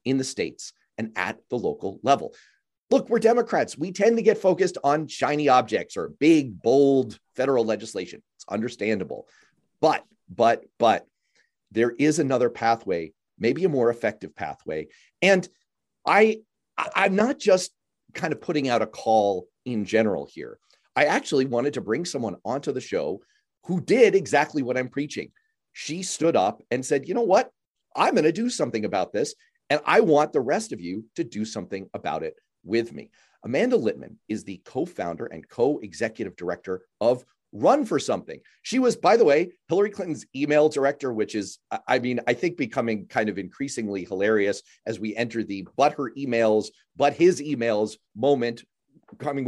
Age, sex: 40-59, male